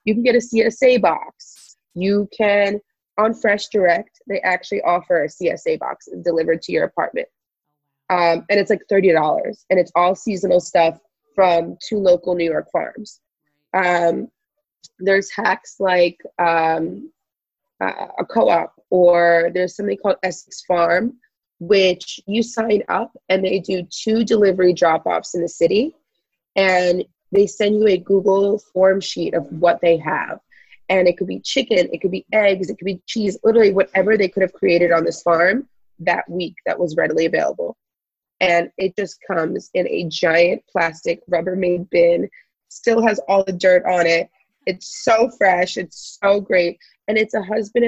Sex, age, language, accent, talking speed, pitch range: female, 20-39, English, American, 165 wpm, 175-215 Hz